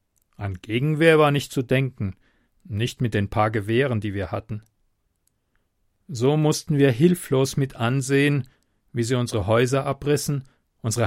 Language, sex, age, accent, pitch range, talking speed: German, male, 40-59, German, 115-145 Hz, 140 wpm